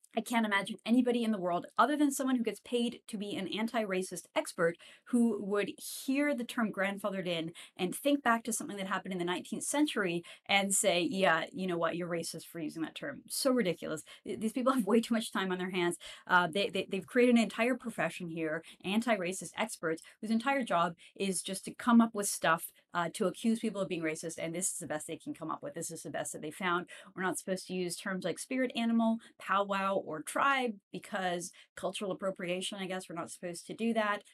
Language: English